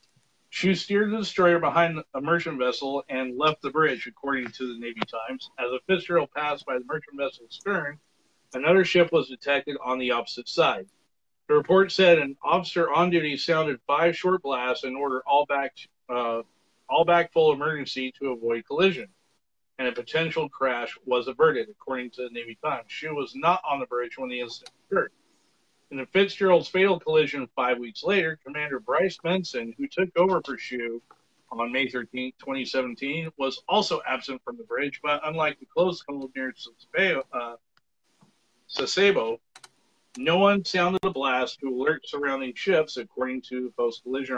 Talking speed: 170 wpm